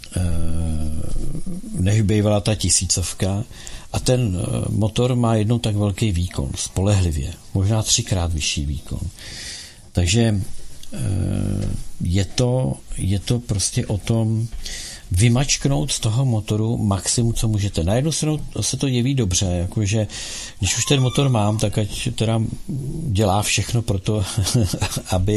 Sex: male